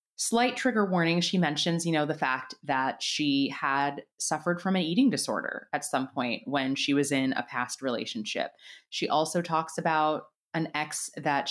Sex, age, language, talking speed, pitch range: female, 20-39, English, 175 wpm, 140-205 Hz